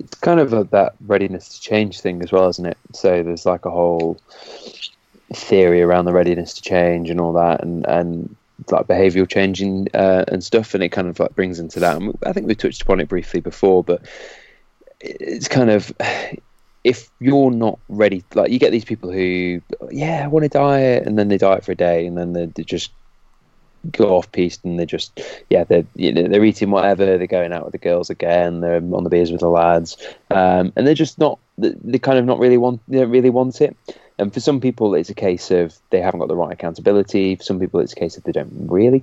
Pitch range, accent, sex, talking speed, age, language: 85-110 Hz, British, male, 230 wpm, 20-39, English